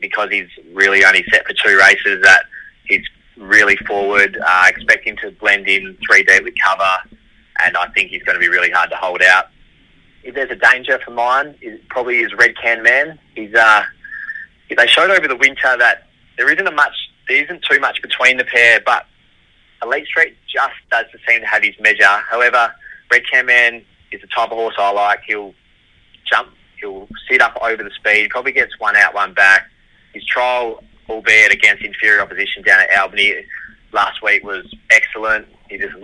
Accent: Australian